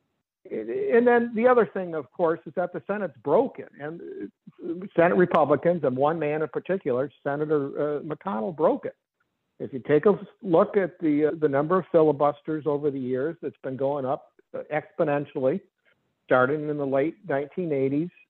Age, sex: 60-79, male